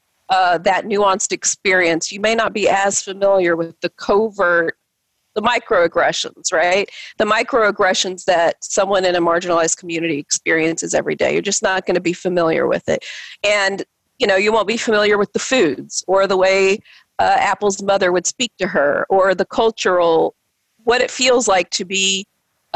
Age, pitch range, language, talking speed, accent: 40-59, 175-215 Hz, English, 175 wpm, American